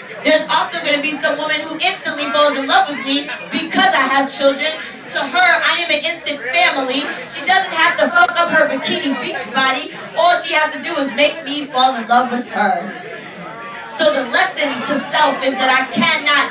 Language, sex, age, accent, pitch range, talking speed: English, female, 20-39, American, 260-315 Hz, 205 wpm